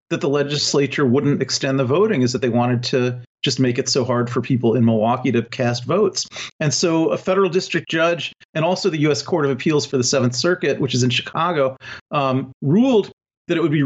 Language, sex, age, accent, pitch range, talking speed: English, male, 40-59, American, 125-170 Hz, 220 wpm